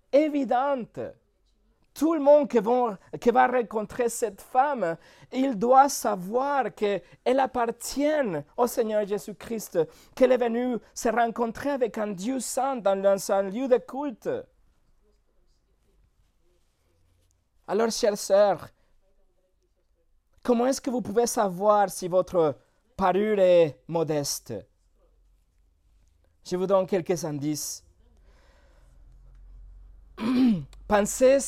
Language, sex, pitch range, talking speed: French, male, 155-245 Hz, 95 wpm